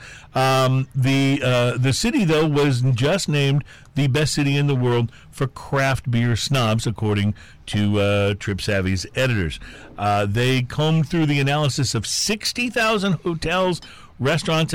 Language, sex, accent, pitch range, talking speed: English, male, American, 115-160 Hz, 140 wpm